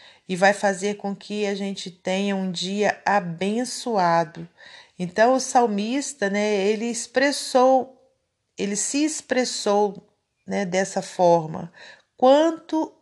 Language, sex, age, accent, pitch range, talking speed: Portuguese, female, 40-59, Brazilian, 180-210 Hz, 110 wpm